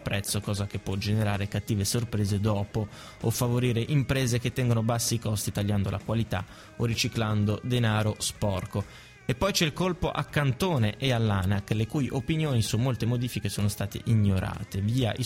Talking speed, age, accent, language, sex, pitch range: 170 wpm, 20-39, native, Italian, male, 105-120 Hz